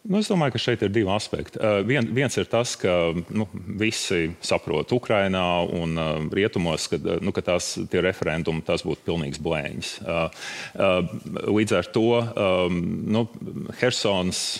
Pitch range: 85-110 Hz